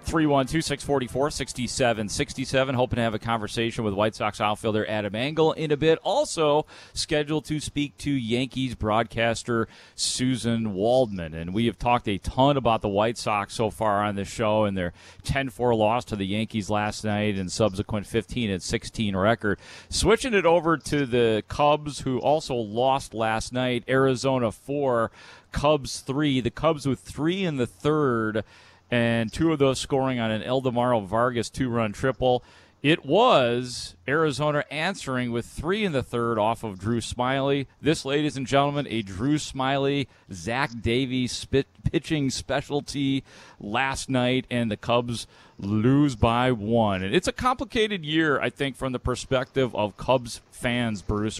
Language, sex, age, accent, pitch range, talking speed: English, male, 40-59, American, 110-135 Hz, 170 wpm